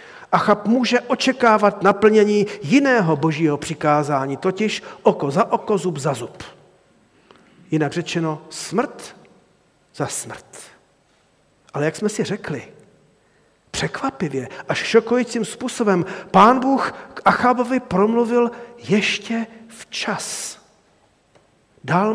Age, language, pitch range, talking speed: 50-69, Czech, 175-230 Hz, 100 wpm